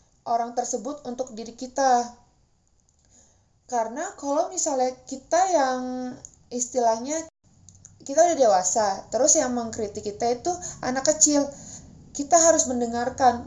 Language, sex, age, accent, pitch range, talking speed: Indonesian, female, 20-39, native, 200-260 Hz, 105 wpm